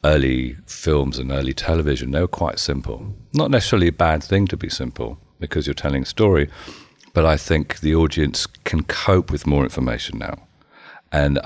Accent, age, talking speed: British, 40-59, 180 wpm